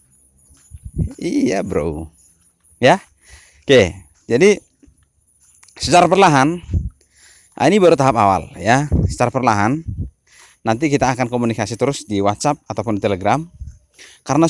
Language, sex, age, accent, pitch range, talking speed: English, male, 30-49, Indonesian, 105-160 Hz, 110 wpm